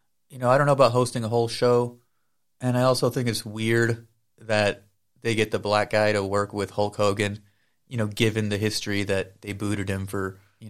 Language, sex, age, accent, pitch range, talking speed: English, male, 30-49, American, 105-125 Hz, 215 wpm